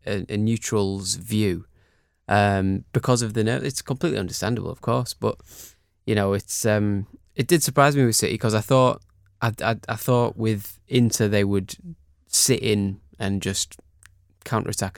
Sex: male